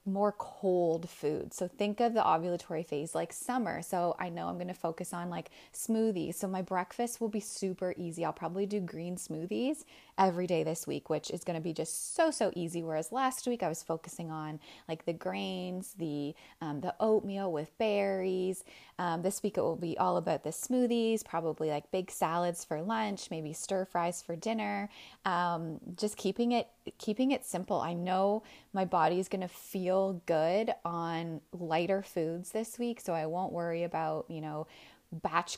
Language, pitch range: English, 165-205 Hz